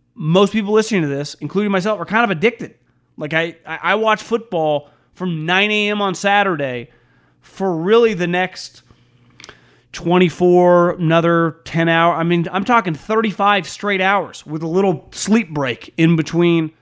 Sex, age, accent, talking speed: male, 30-49, American, 155 wpm